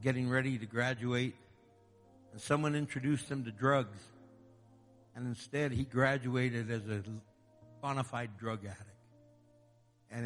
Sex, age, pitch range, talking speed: male, 60-79, 110-130 Hz, 115 wpm